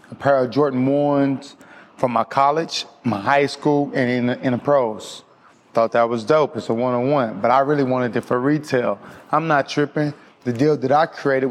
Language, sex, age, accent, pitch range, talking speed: English, male, 20-39, American, 125-155 Hz, 200 wpm